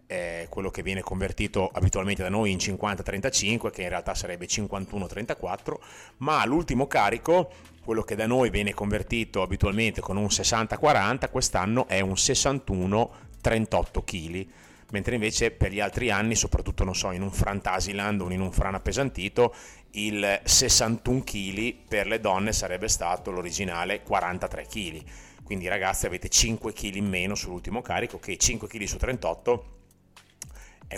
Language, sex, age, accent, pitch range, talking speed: Italian, male, 30-49, native, 95-115 Hz, 150 wpm